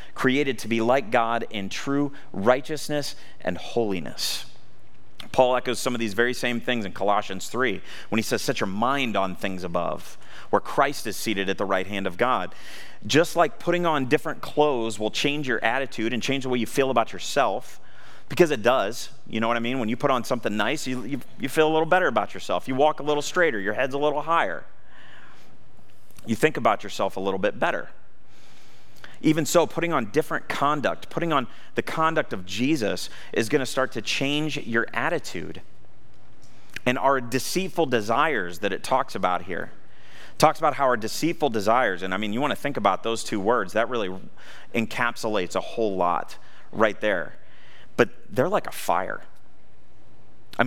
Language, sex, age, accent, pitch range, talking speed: English, male, 30-49, American, 110-150 Hz, 185 wpm